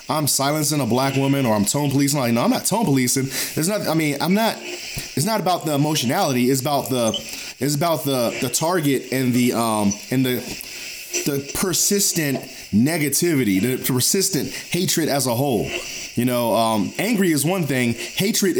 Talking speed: 185 wpm